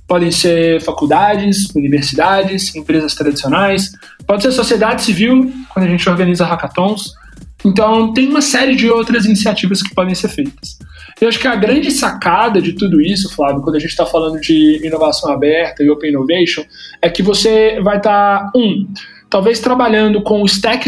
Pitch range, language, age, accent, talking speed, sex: 175-225 Hz, Portuguese, 20-39, Brazilian, 165 wpm, male